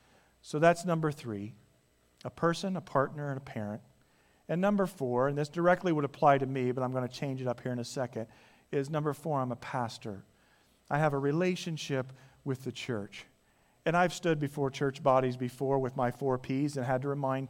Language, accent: English, American